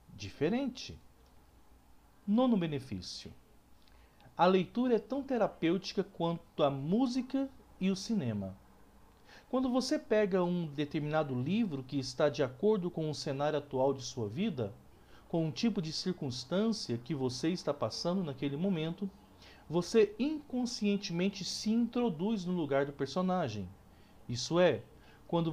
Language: Portuguese